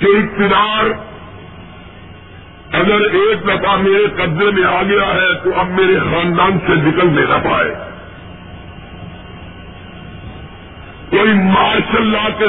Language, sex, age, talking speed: Urdu, female, 50-69, 105 wpm